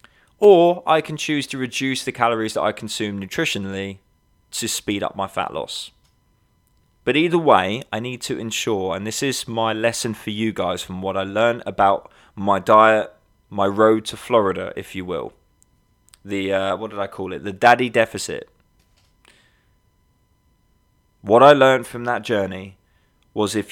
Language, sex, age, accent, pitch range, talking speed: English, male, 20-39, British, 100-125 Hz, 165 wpm